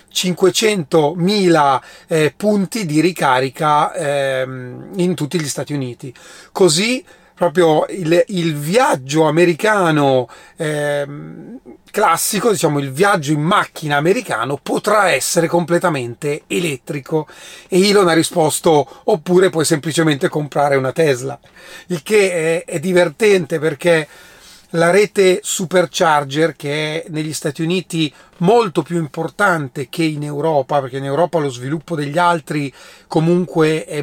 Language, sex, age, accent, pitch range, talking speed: Italian, male, 30-49, native, 145-180 Hz, 115 wpm